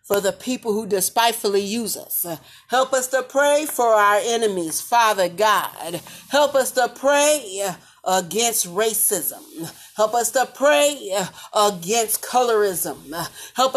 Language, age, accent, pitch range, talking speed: English, 40-59, American, 195-250 Hz, 125 wpm